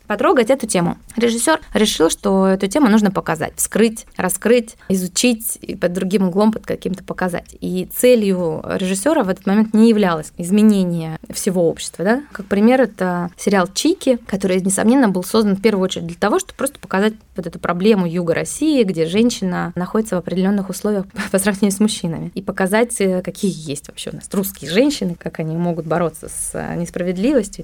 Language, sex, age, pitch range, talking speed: Russian, female, 20-39, 180-225 Hz, 175 wpm